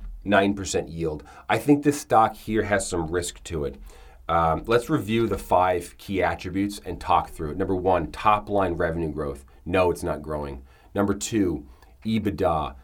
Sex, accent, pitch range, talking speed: male, American, 85-110 Hz, 165 wpm